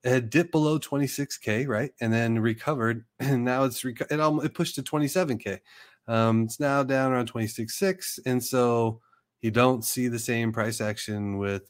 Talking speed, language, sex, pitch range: 170 wpm, English, male, 110-135 Hz